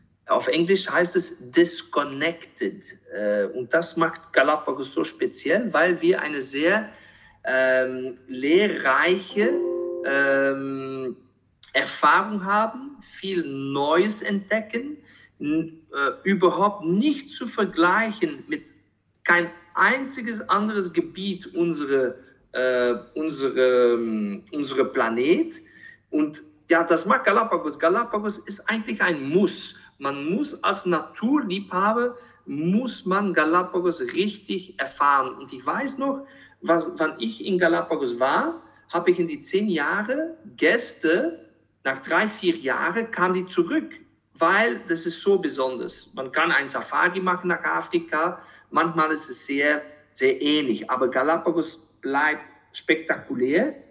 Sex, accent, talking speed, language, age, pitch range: male, German, 110 wpm, German, 50-69, 140-220 Hz